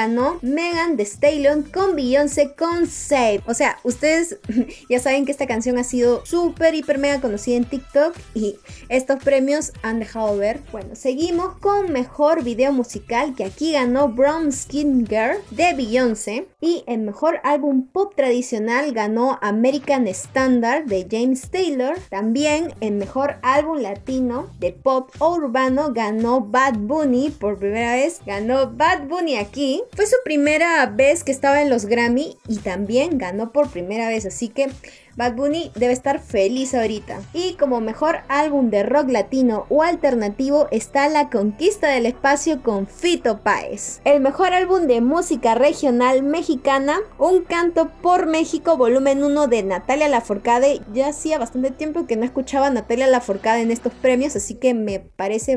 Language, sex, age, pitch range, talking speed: Spanish, female, 20-39, 235-300 Hz, 160 wpm